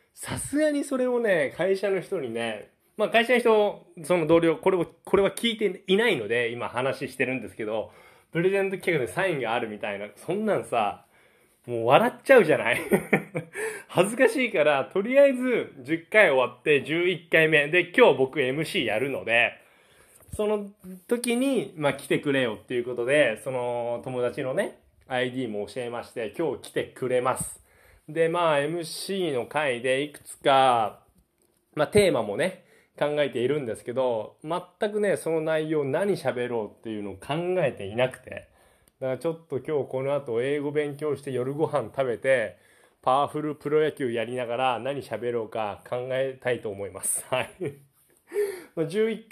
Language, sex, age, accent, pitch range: Japanese, male, 20-39, native, 125-190 Hz